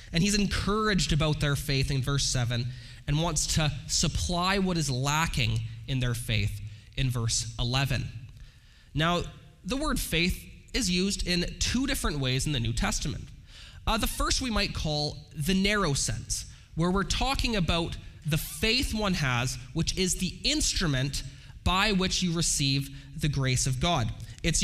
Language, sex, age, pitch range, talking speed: English, male, 20-39, 130-180 Hz, 160 wpm